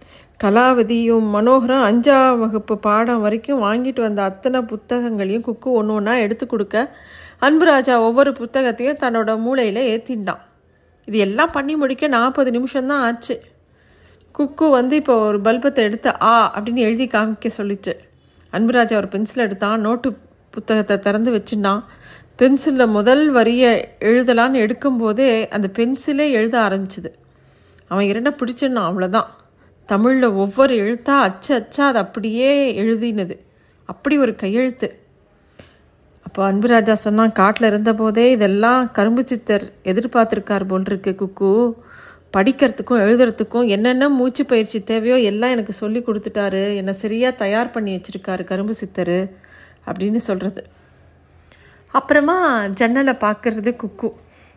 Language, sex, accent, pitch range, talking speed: Tamil, female, native, 210-255 Hz, 115 wpm